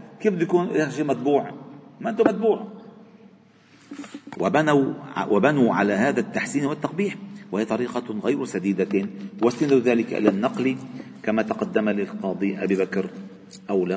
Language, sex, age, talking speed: Arabic, male, 50-69, 120 wpm